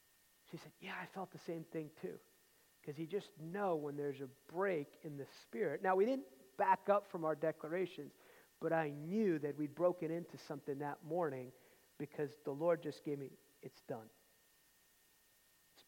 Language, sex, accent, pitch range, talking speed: English, male, American, 145-180 Hz, 180 wpm